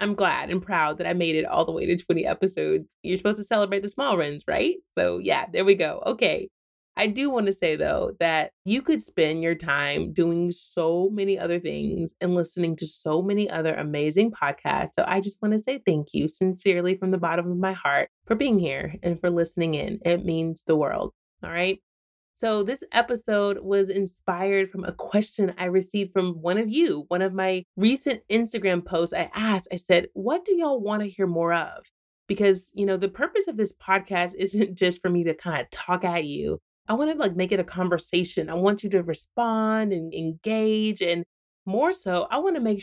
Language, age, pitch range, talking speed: English, 20-39, 170-205 Hz, 215 wpm